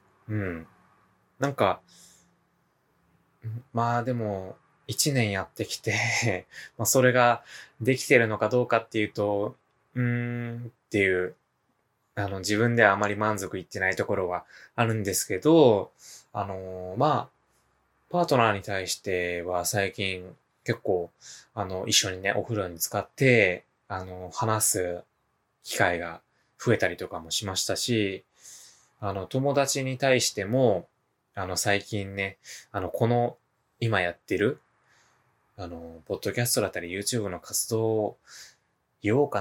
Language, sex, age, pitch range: Japanese, male, 20-39, 95-125 Hz